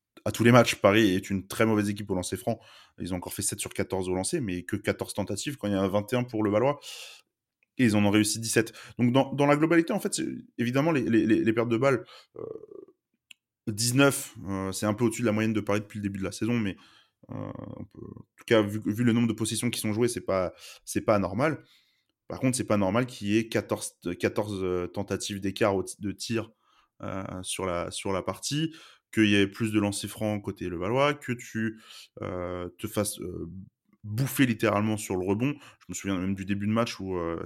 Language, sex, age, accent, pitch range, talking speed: French, male, 20-39, French, 100-120 Hz, 230 wpm